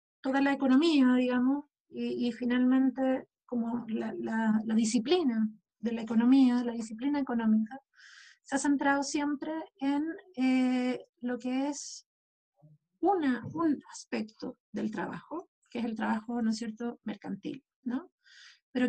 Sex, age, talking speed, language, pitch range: female, 30-49, 135 wpm, Spanish, 225-270 Hz